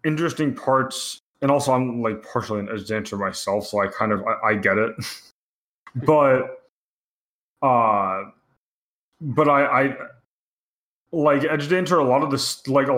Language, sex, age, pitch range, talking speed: English, male, 20-39, 105-140 Hz, 155 wpm